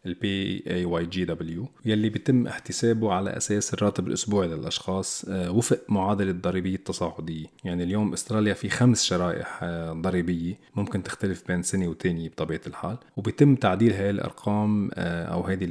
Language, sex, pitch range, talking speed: Arabic, male, 90-110 Hz, 140 wpm